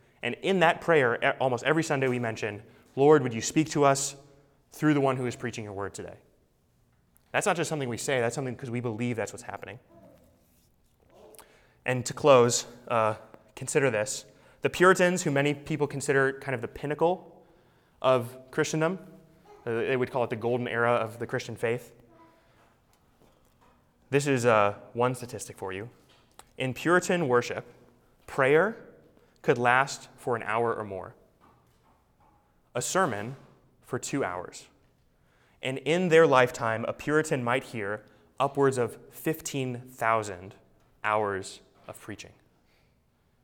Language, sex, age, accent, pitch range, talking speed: English, male, 20-39, American, 115-145 Hz, 145 wpm